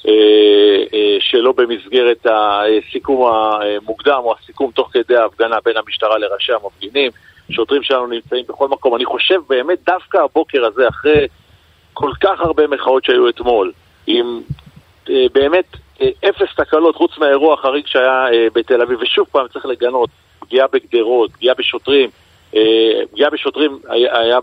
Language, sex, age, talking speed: Hebrew, male, 50-69, 130 wpm